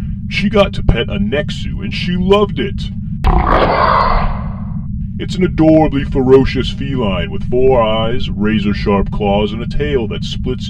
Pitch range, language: 100-155 Hz, English